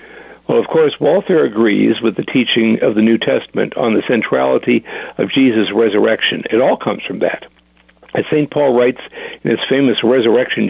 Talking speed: 175 wpm